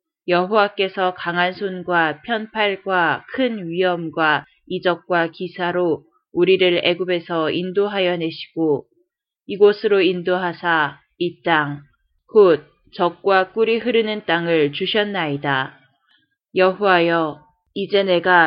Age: 20-39